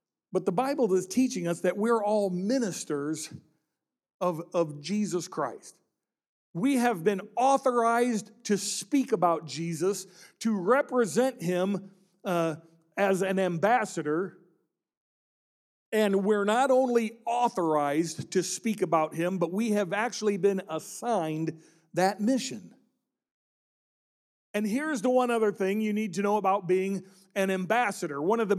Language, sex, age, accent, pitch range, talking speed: English, male, 50-69, American, 185-230 Hz, 130 wpm